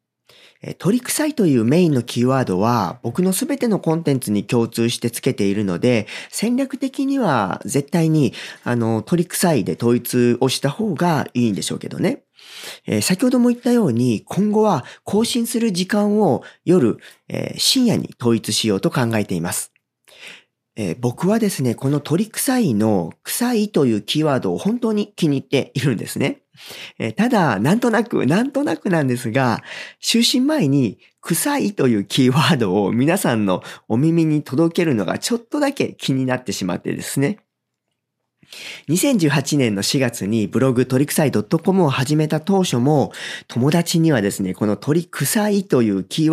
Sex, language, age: male, Japanese, 40-59